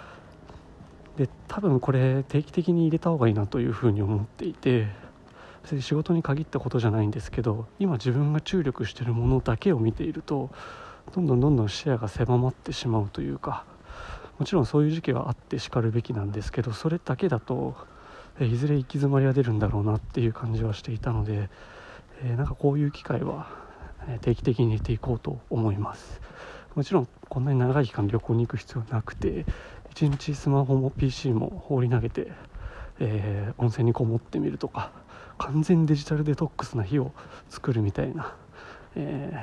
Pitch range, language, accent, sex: 115-140 Hz, Japanese, native, male